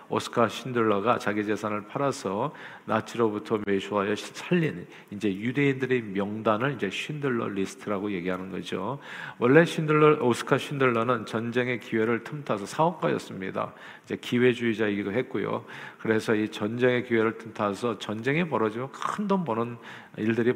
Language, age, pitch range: Korean, 40-59, 105-130 Hz